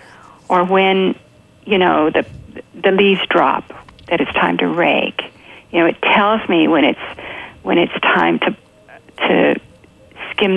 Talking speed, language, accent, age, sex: 150 wpm, English, American, 50-69, female